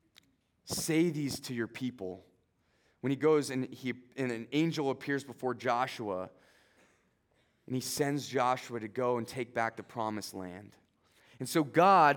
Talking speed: 155 wpm